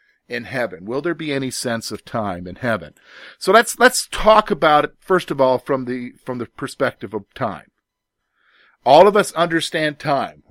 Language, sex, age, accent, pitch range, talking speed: English, male, 50-69, American, 125-175 Hz, 185 wpm